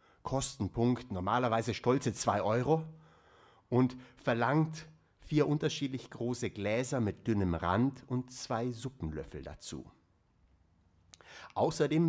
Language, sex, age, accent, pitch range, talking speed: German, male, 60-79, German, 90-135 Hz, 95 wpm